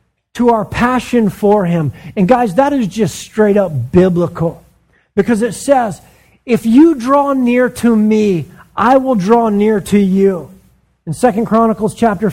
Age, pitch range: 40-59, 170-240 Hz